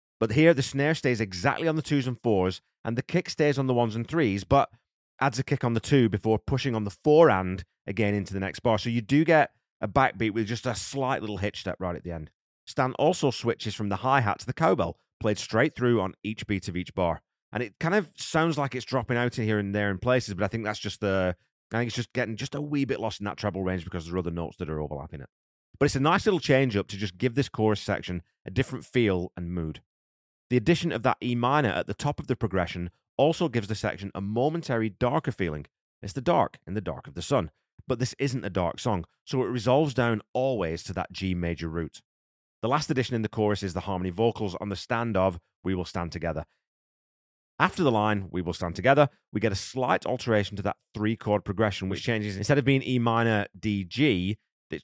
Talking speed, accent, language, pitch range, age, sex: 245 wpm, British, English, 95-130 Hz, 30-49, male